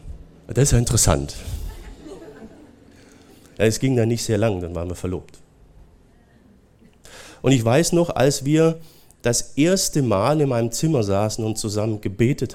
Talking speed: 145 wpm